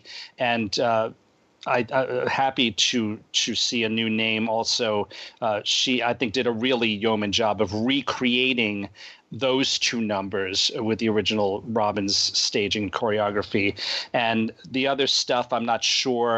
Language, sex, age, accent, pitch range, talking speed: English, male, 30-49, American, 105-125 Hz, 145 wpm